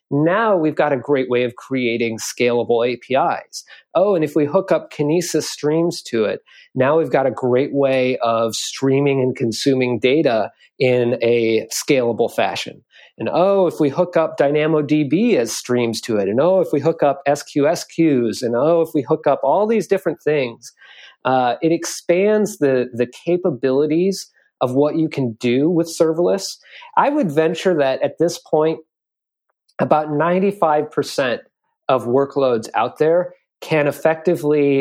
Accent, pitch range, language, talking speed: American, 130-165 Hz, English, 160 wpm